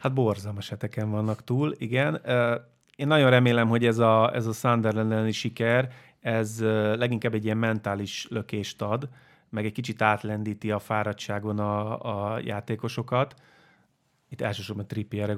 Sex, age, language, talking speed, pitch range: male, 30-49, Hungarian, 135 wpm, 105-130 Hz